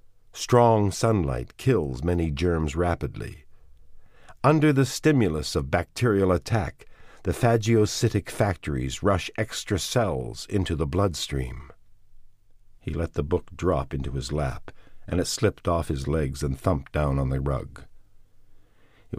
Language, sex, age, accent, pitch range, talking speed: English, male, 50-69, American, 75-105 Hz, 130 wpm